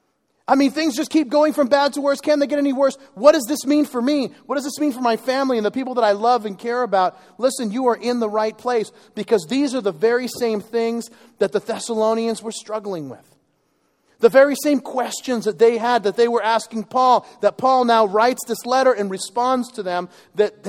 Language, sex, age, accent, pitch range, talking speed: English, male, 40-59, American, 185-245 Hz, 230 wpm